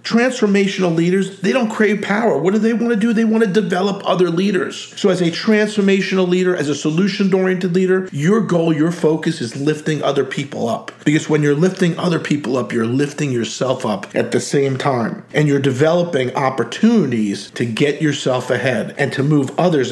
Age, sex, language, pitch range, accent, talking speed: 50-69, male, English, 145-185 Hz, American, 190 wpm